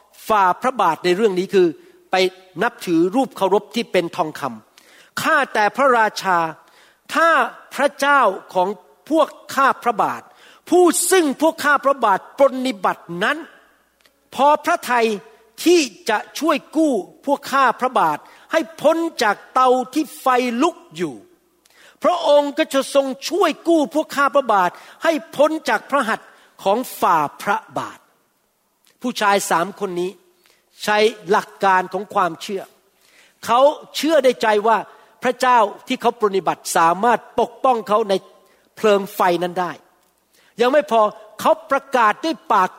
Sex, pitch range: male, 200-290 Hz